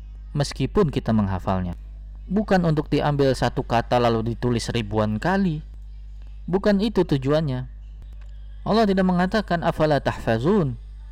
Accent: native